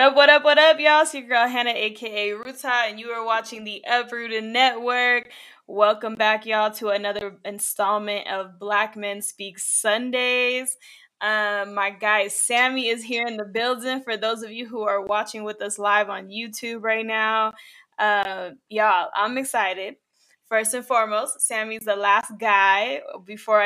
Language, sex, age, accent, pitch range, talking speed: English, female, 10-29, American, 205-255 Hz, 165 wpm